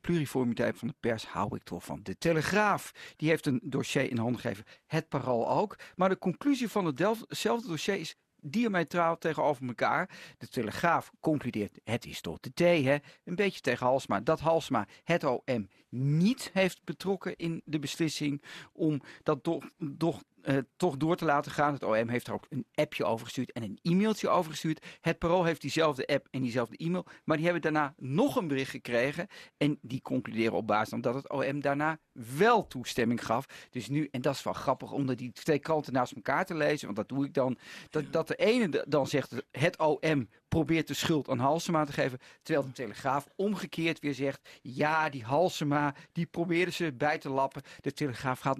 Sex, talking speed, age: male, 195 wpm, 50-69